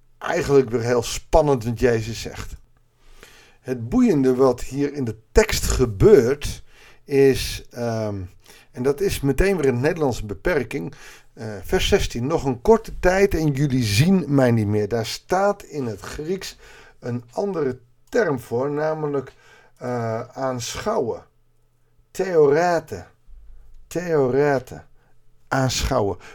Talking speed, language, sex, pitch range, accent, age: 120 wpm, Dutch, male, 115-150 Hz, Dutch, 50-69